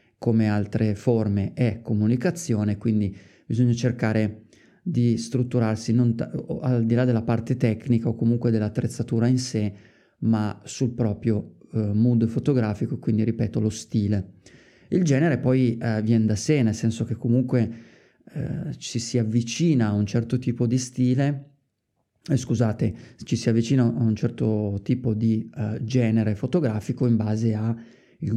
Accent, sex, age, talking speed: native, male, 30-49, 150 wpm